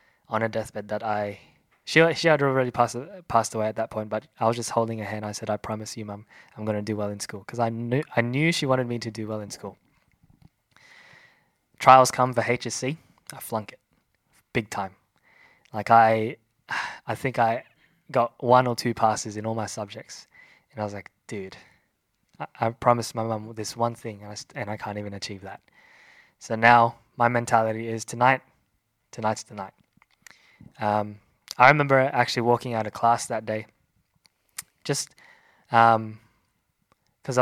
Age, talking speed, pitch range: 10-29, 180 wpm, 110-120 Hz